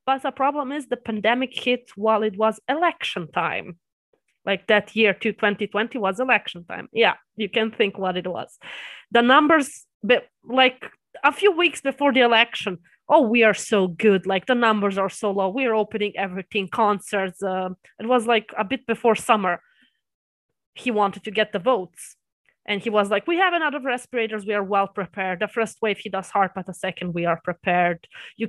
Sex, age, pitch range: female, 20-39, 195-235 Hz